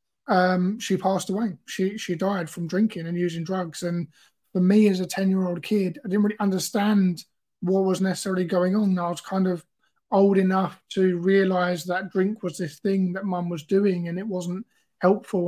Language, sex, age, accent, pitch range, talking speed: English, male, 20-39, British, 175-195 Hz, 200 wpm